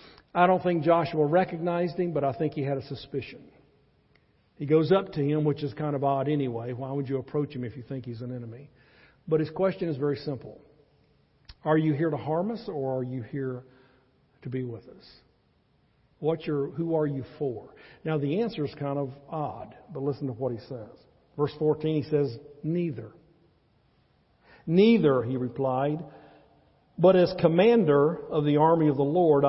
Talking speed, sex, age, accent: 185 wpm, male, 50-69, American